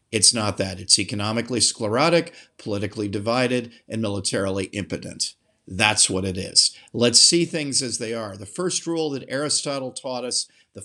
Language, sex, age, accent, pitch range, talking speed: English, male, 50-69, American, 115-170 Hz, 160 wpm